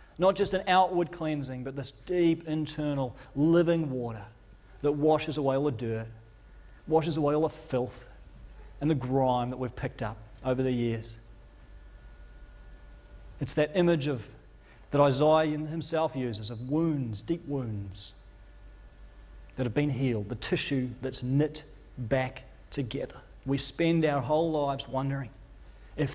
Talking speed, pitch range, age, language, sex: 140 wpm, 110-150 Hz, 40-59, English, male